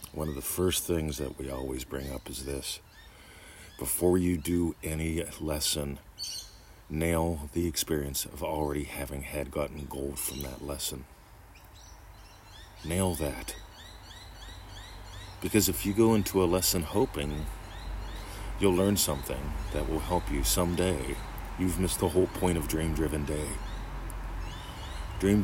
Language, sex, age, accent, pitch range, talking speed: English, male, 40-59, American, 75-95 Hz, 135 wpm